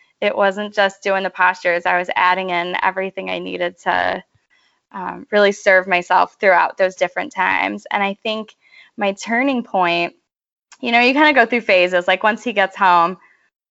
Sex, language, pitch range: female, English, 185-240 Hz